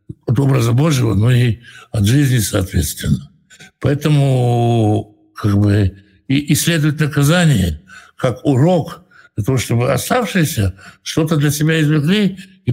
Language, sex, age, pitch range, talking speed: Russian, male, 60-79, 115-150 Hz, 125 wpm